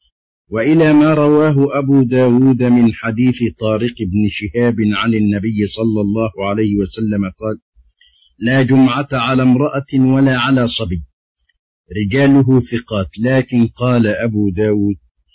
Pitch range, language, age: 100-125 Hz, Arabic, 50-69